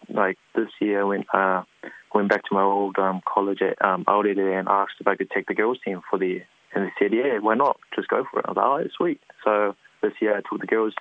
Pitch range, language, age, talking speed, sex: 100-110 Hz, English, 20-39, 275 wpm, male